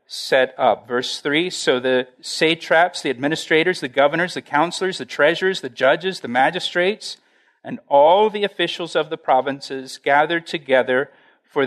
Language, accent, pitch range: English, American, 140-180 Hz